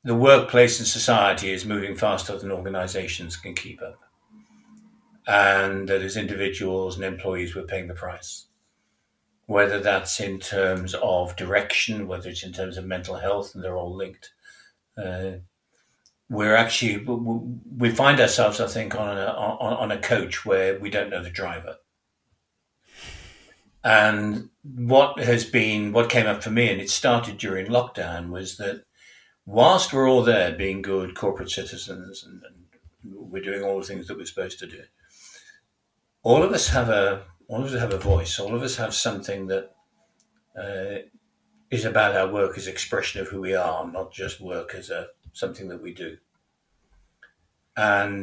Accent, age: British, 60-79